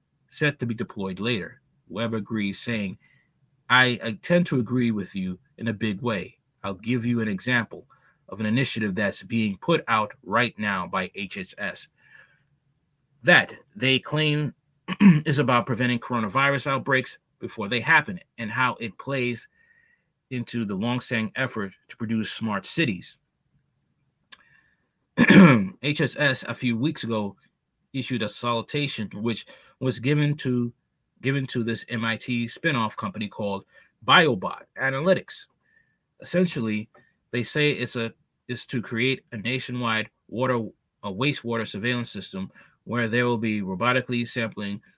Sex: male